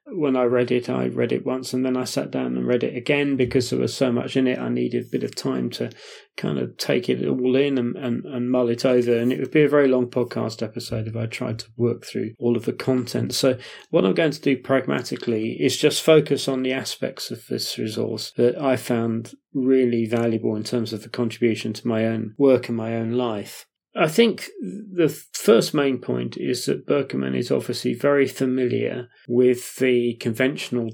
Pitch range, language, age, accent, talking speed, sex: 115-135 Hz, English, 30-49, British, 215 wpm, male